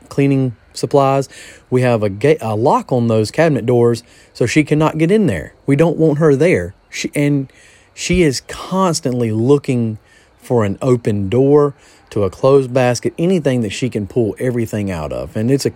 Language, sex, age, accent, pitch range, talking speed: English, male, 30-49, American, 105-145 Hz, 185 wpm